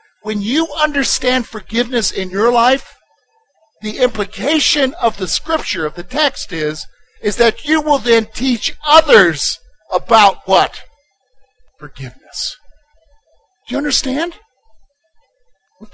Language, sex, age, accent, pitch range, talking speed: English, male, 50-69, American, 185-260 Hz, 115 wpm